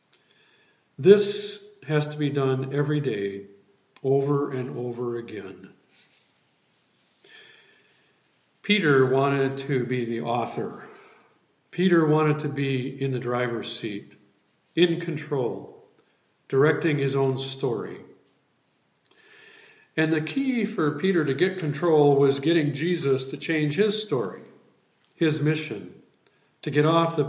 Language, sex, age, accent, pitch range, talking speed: English, male, 50-69, American, 135-160 Hz, 115 wpm